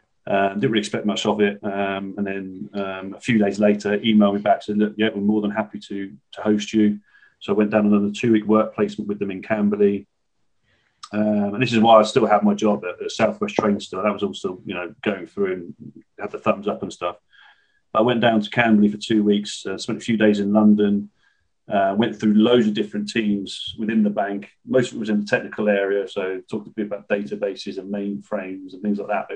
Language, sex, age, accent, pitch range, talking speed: English, male, 30-49, British, 100-110 Hz, 240 wpm